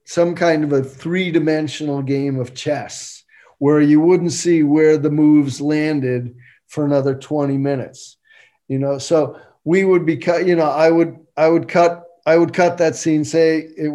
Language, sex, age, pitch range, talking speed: English, male, 50-69, 140-170 Hz, 175 wpm